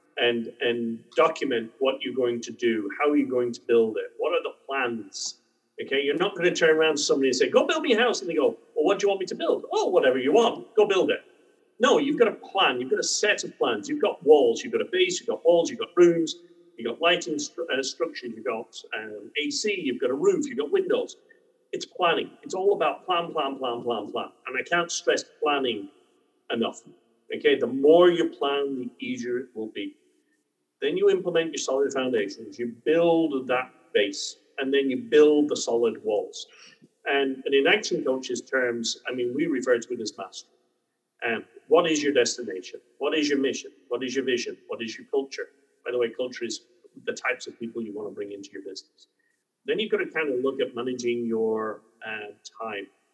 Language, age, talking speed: English, 40-59, 220 wpm